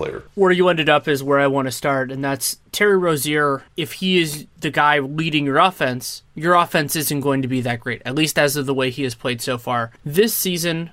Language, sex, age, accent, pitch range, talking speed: English, male, 20-39, American, 135-170 Hz, 235 wpm